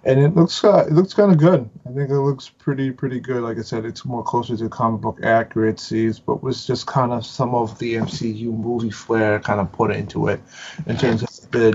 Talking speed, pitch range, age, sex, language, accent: 235 wpm, 110-135 Hz, 30-49, male, English, American